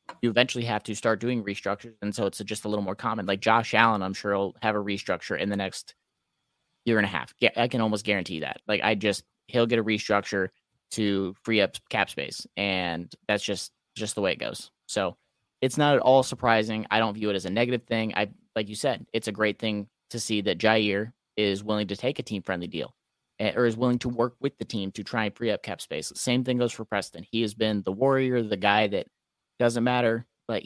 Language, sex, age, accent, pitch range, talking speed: English, male, 30-49, American, 105-120 Hz, 240 wpm